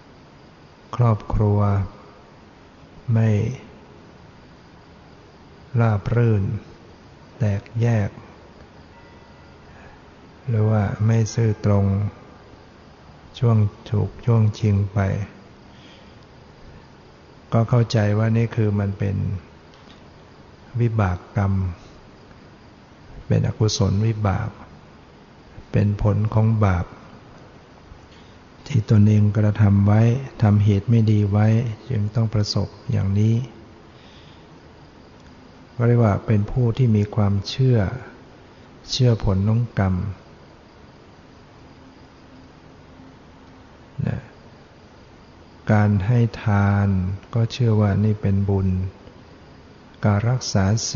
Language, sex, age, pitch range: Thai, male, 60-79, 100-115 Hz